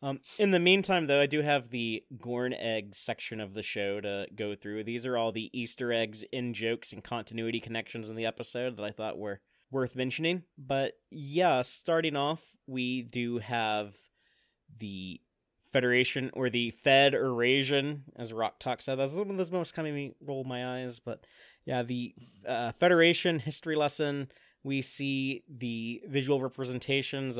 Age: 30-49